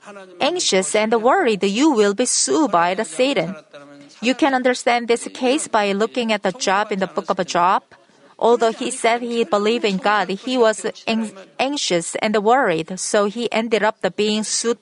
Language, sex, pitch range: Korean, female, 200-240 Hz